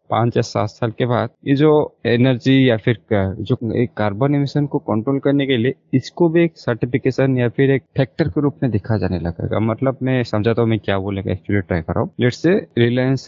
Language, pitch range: Hindi, 110-140 Hz